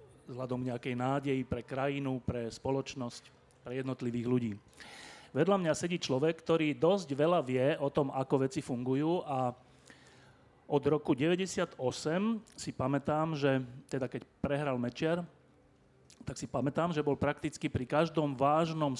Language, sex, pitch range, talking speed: Slovak, male, 125-145 Hz, 135 wpm